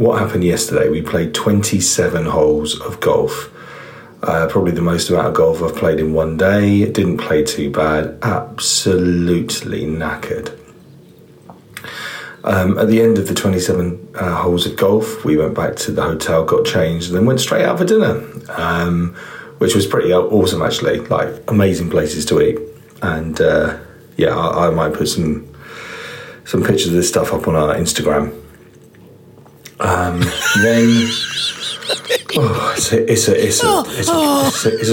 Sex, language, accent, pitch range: male, English, British, 85-110 Hz